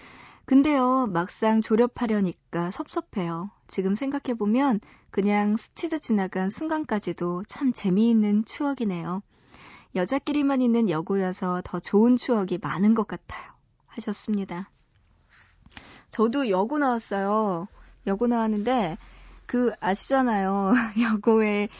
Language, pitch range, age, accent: Korean, 190-255 Hz, 20-39, native